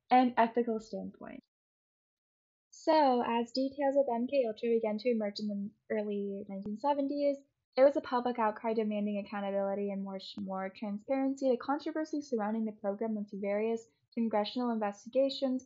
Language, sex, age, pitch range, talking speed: English, female, 10-29, 205-255 Hz, 140 wpm